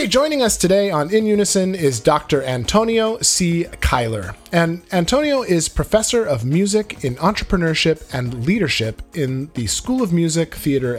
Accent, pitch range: American, 120-185 Hz